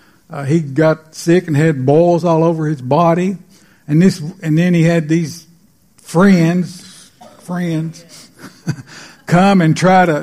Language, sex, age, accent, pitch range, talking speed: English, male, 60-79, American, 150-175 Hz, 140 wpm